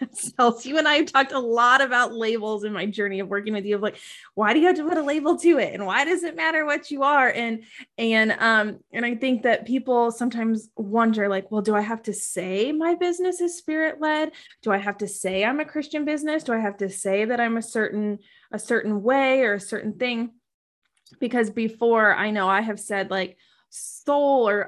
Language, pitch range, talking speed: English, 205-265 Hz, 230 wpm